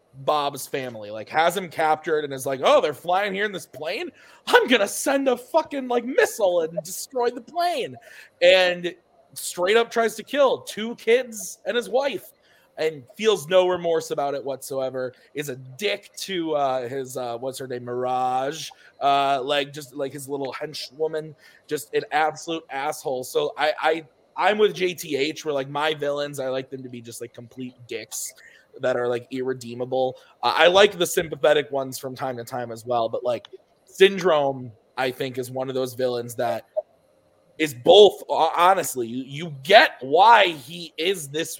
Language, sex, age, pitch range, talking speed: English, male, 20-39, 130-175 Hz, 180 wpm